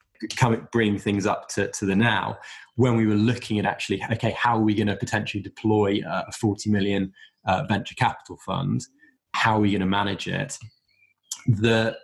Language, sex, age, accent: English, male, 20-39, British